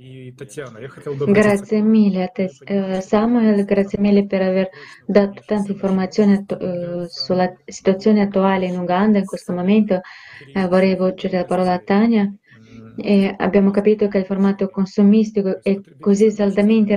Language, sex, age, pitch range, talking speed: Italian, female, 20-39, 180-215 Hz, 135 wpm